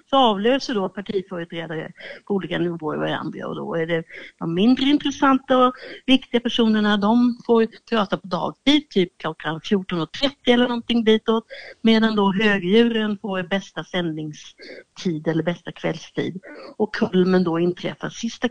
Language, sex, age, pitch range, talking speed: Swedish, female, 60-79, 180-240 Hz, 145 wpm